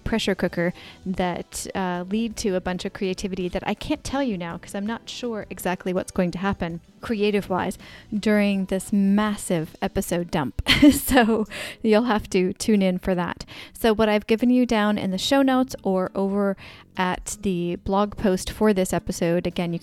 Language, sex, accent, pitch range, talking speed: English, female, American, 180-220 Hz, 185 wpm